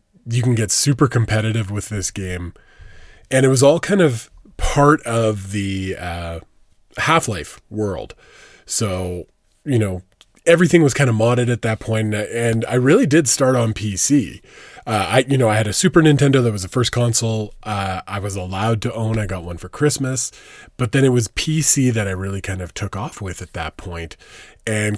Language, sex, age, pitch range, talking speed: English, male, 20-39, 100-135 Hz, 190 wpm